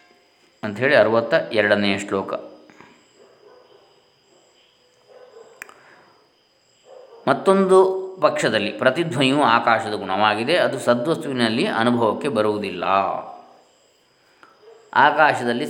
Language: Kannada